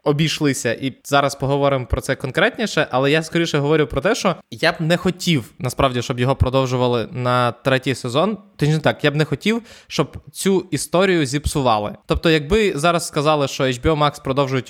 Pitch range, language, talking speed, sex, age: 125-160 Hz, Ukrainian, 170 wpm, male, 20-39